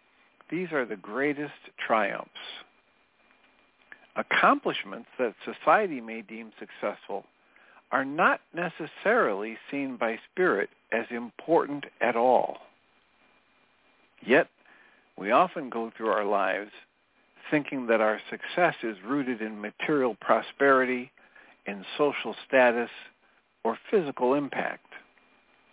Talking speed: 100 wpm